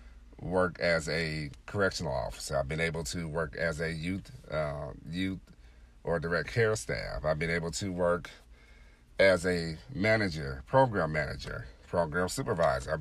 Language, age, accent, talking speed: English, 40-59, American, 150 wpm